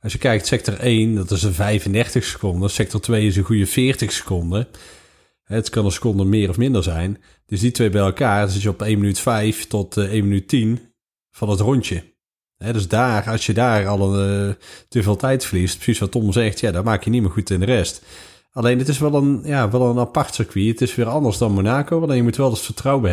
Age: 40-59